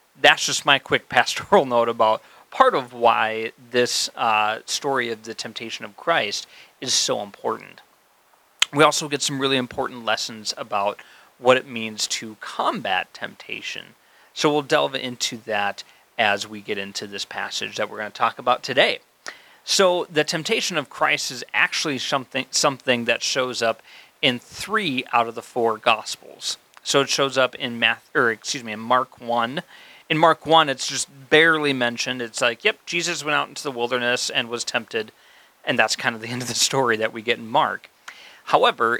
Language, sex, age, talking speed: English, male, 30-49, 180 wpm